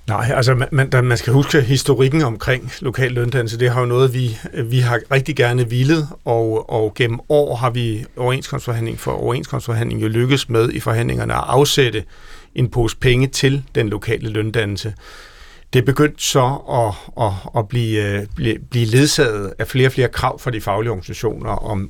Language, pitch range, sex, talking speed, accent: Danish, 110-135 Hz, male, 180 wpm, native